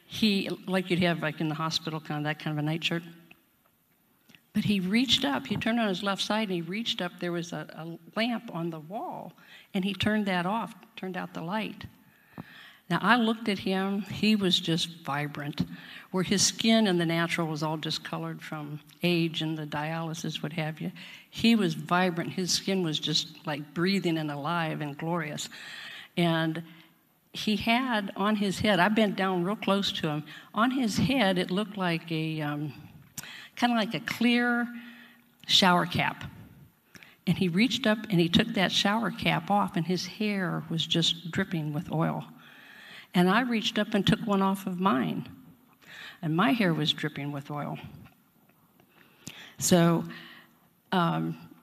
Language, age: English, 50-69